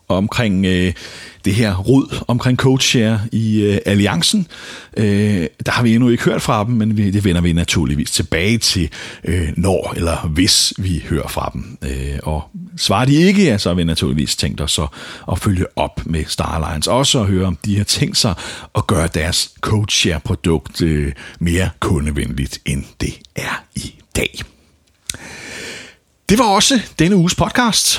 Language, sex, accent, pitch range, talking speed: Danish, male, native, 85-125 Hz, 165 wpm